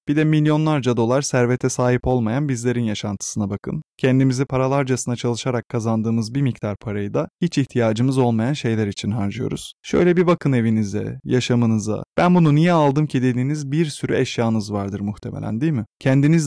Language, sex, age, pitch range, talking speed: Turkish, male, 30-49, 110-140 Hz, 155 wpm